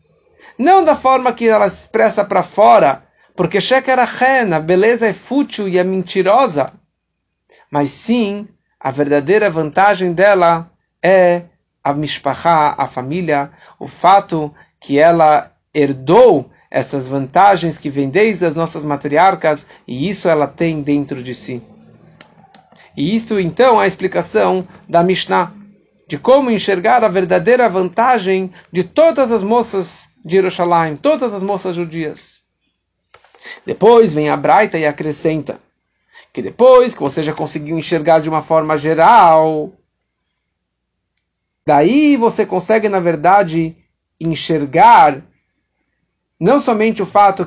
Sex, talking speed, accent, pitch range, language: male, 125 wpm, Brazilian, 160-210 Hz, English